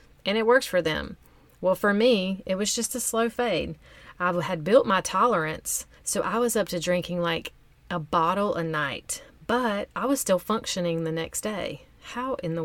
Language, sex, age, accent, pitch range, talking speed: English, female, 30-49, American, 170-220 Hz, 195 wpm